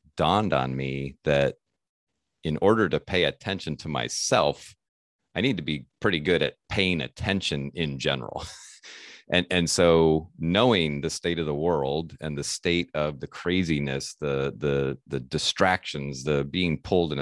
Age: 30-49